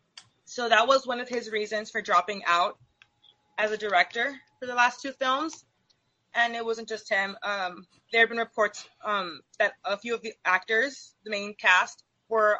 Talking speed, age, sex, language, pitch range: 185 wpm, 20-39, female, English, 195-240 Hz